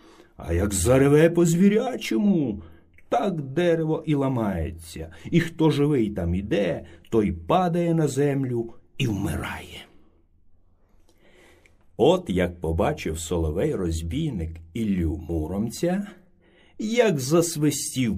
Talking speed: 90 wpm